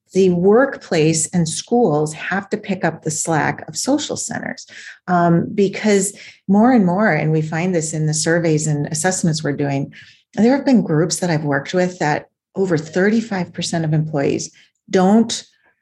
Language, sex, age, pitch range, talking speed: English, female, 40-59, 160-205 Hz, 165 wpm